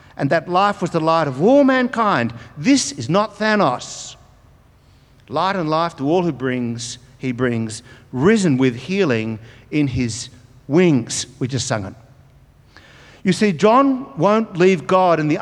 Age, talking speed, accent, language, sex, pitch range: 50-69, 155 wpm, Australian, English, male, 130-195 Hz